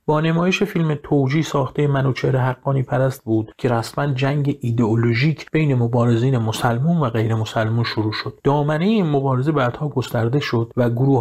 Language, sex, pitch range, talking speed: Persian, male, 115-145 Hz, 155 wpm